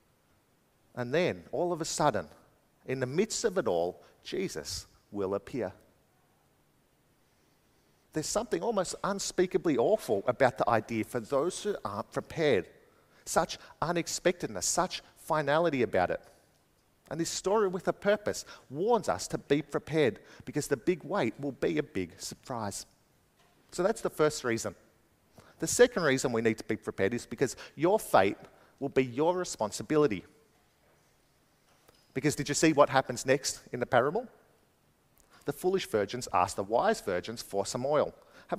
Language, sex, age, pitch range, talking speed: English, male, 50-69, 120-185 Hz, 150 wpm